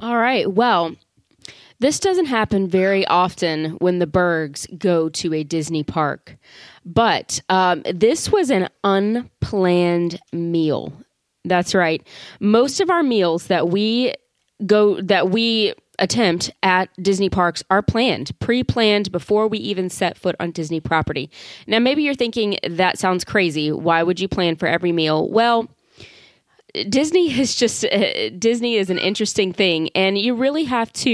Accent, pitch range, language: American, 175-230 Hz, English